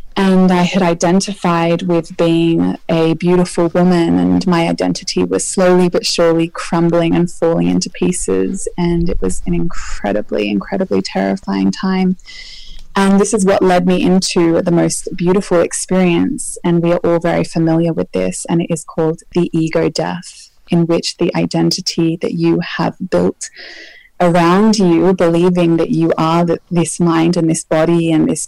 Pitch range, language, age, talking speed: 160-180 Hz, English, 20-39, 160 wpm